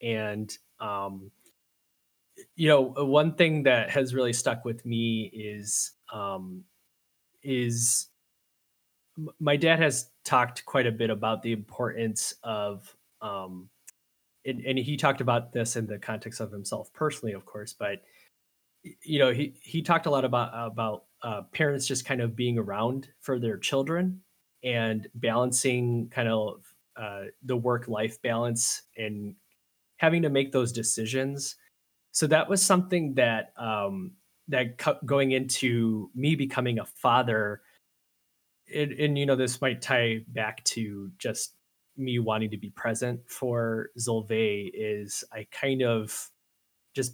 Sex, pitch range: male, 110-135 Hz